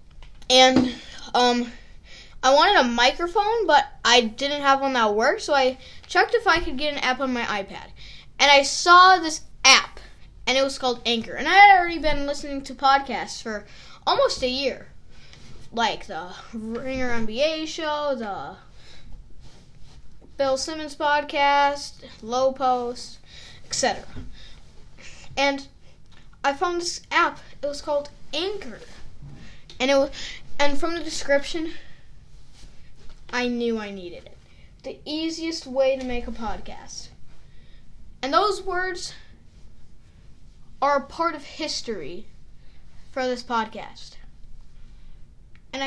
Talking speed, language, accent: 130 wpm, English, American